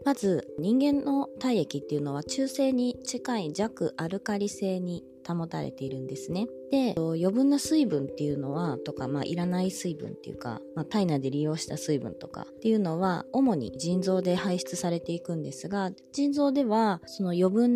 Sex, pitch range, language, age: female, 155-235 Hz, Japanese, 20-39